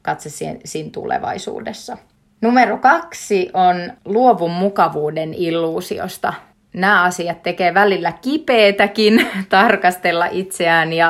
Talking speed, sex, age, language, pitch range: 85 wpm, female, 30-49, Finnish, 160-195 Hz